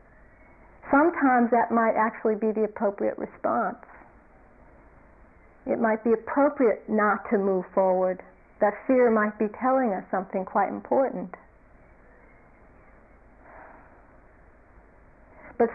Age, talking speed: 50-69, 100 wpm